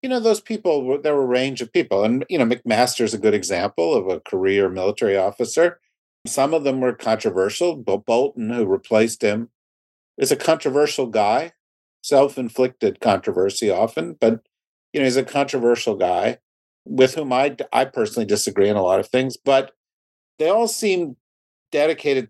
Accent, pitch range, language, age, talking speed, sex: American, 110-135 Hz, English, 50-69, 165 wpm, male